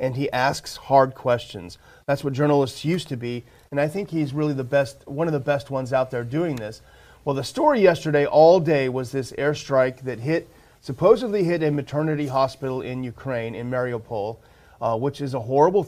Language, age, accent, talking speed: English, 40-59, American, 195 wpm